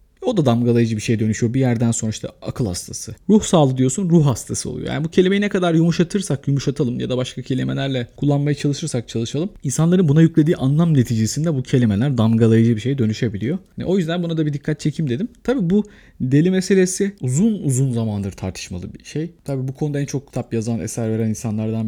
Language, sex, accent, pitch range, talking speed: Turkish, male, native, 115-160 Hz, 195 wpm